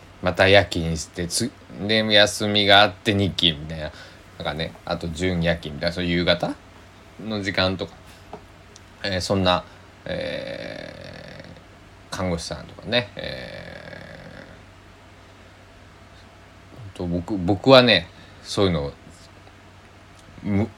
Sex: male